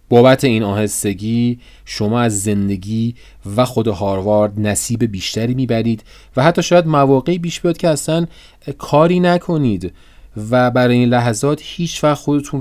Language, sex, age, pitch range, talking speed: Persian, male, 30-49, 100-130 Hz, 140 wpm